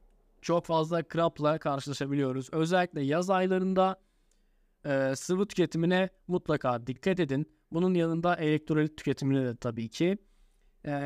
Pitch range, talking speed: 150-190 Hz, 115 wpm